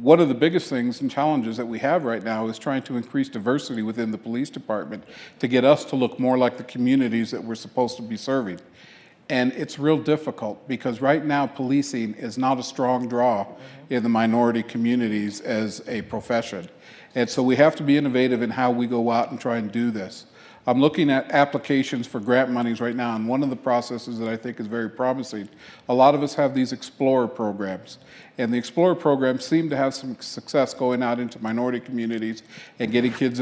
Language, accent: English, American